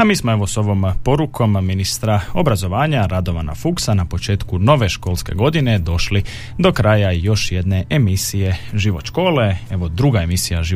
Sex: male